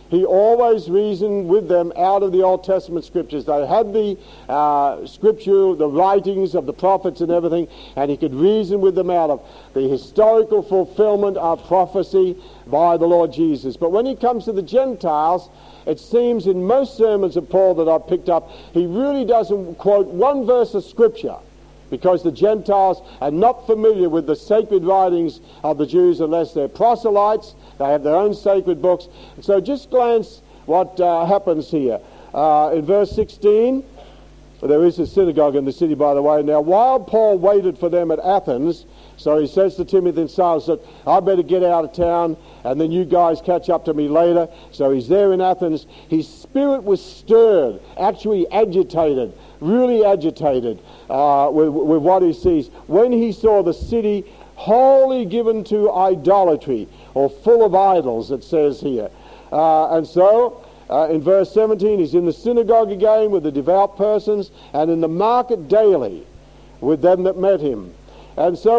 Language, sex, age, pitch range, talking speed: English, male, 60-79, 165-215 Hz, 175 wpm